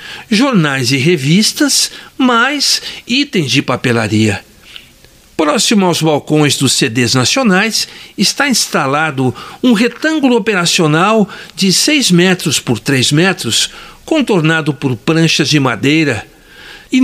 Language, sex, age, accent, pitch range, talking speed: Portuguese, male, 60-79, Brazilian, 130-210 Hz, 105 wpm